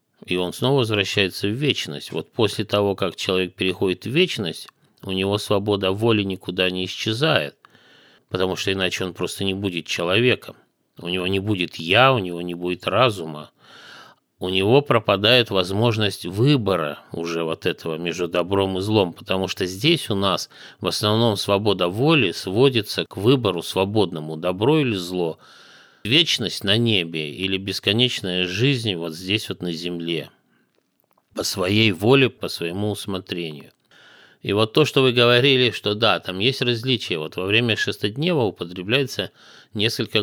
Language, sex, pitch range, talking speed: Russian, male, 90-120 Hz, 150 wpm